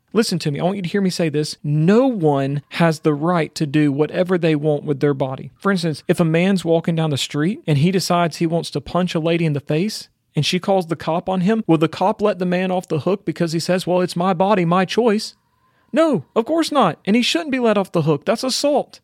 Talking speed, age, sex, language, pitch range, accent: 265 wpm, 40-59, male, English, 165-215 Hz, American